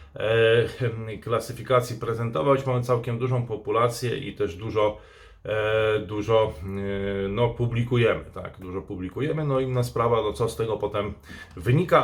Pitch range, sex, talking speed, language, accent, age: 105-130 Hz, male, 135 wpm, Polish, native, 30-49